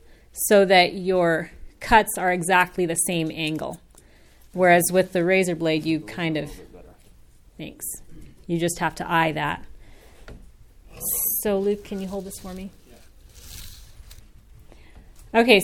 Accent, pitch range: American, 145-195 Hz